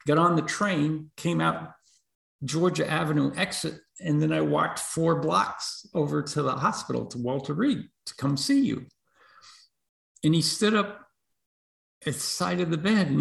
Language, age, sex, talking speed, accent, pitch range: English, 50-69, male, 170 wpm, American, 135-185 Hz